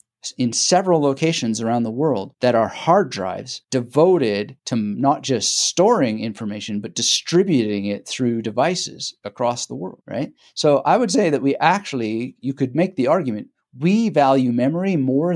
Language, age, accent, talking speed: English, 30-49, American, 160 wpm